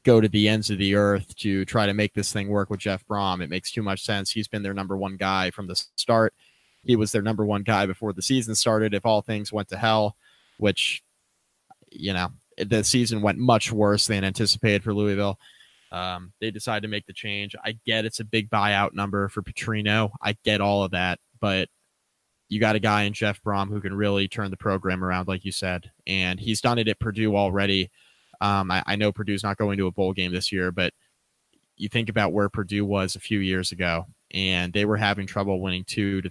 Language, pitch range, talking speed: English, 95-110 Hz, 225 wpm